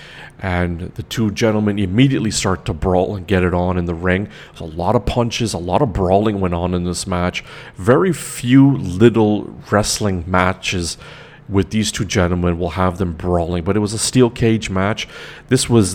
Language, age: English, 40-59